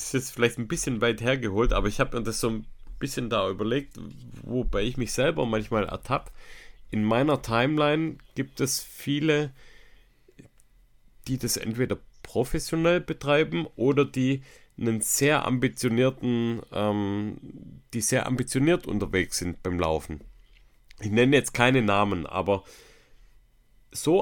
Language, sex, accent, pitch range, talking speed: German, male, German, 105-130 Hz, 135 wpm